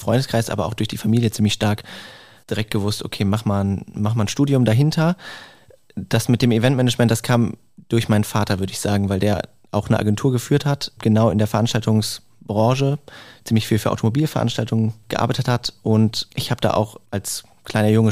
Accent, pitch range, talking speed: German, 105-120 Hz, 180 wpm